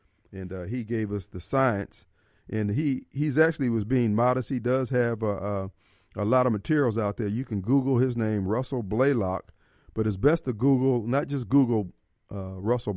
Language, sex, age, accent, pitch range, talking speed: English, male, 40-59, American, 100-130 Hz, 195 wpm